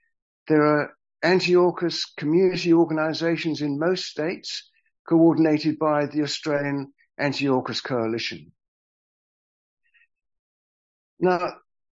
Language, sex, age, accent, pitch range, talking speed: English, male, 60-79, British, 150-185 Hz, 75 wpm